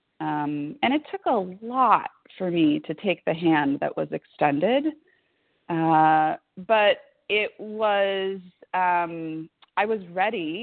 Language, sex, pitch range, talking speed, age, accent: English, female, 160-245 Hz, 130 wpm, 30-49, American